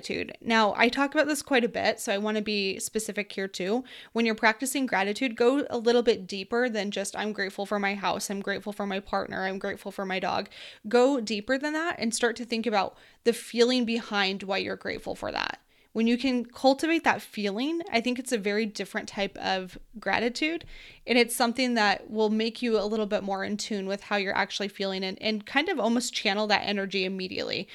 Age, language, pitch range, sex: 20-39, English, 205-240 Hz, female